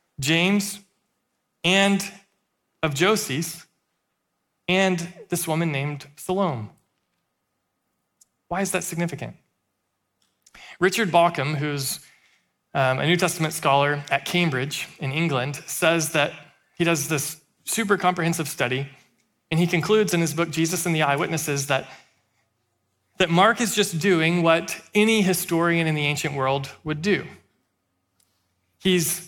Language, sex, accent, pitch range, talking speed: English, male, American, 135-185 Hz, 120 wpm